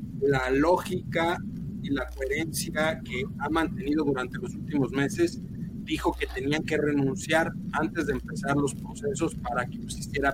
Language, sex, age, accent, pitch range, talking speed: Spanish, male, 50-69, Mexican, 140-200 Hz, 145 wpm